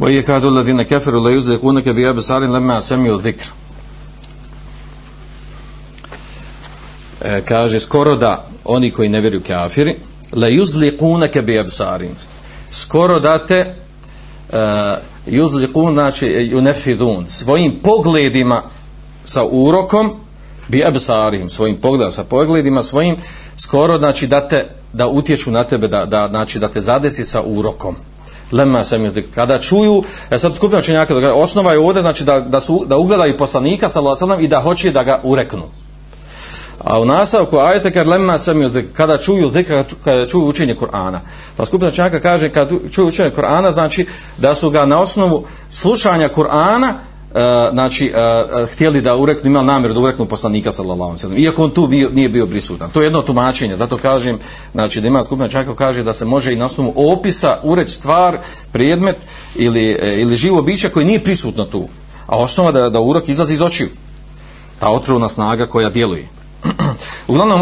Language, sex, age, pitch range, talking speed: Croatian, male, 40-59, 120-165 Hz, 155 wpm